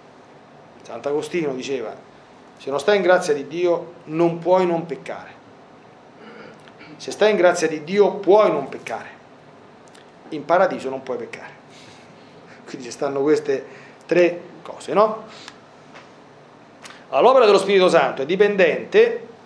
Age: 40-59